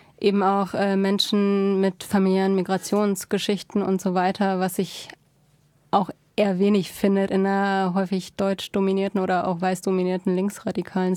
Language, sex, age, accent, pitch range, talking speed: German, female, 20-39, German, 185-205 Hz, 140 wpm